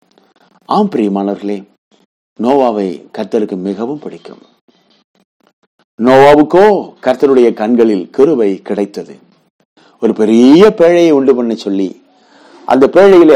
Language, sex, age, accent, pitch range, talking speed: Tamil, male, 50-69, native, 105-150 Hz, 75 wpm